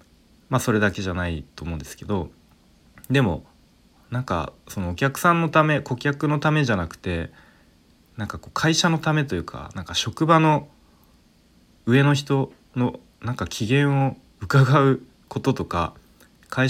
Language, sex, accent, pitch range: Japanese, male, native, 85-130 Hz